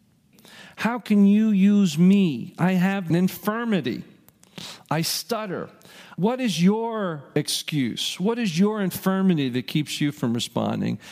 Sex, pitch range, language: male, 105-175 Hz, English